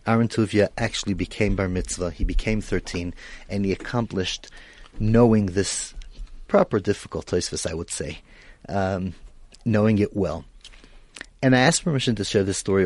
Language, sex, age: English, male, 30-49